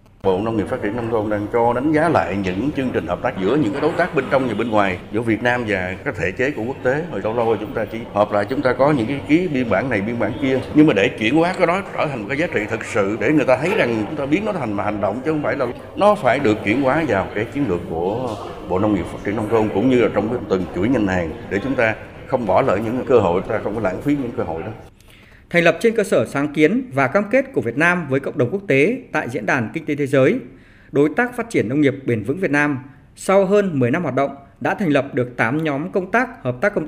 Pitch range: 120-170 Hz